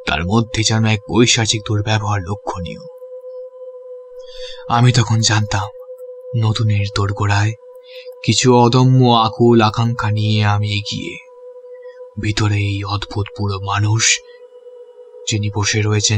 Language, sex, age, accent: Bengali, male, 20-39, native